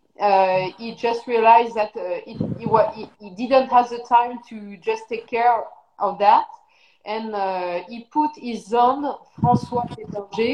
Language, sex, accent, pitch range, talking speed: Portuguese, female, French, 210-255 Hz, 155 wpm